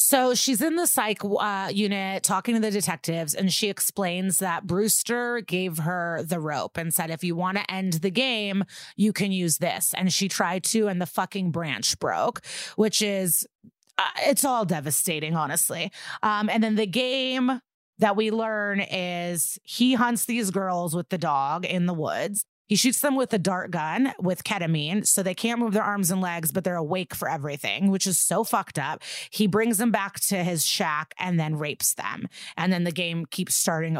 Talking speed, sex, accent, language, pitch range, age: 200 wpm, female, American, English, 170-215 Hz, 30-49